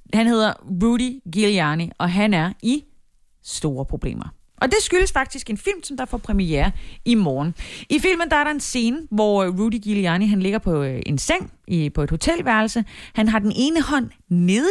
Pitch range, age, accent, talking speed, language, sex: 175-245 Hz, 30-49, native, 180 wpm, Danish, female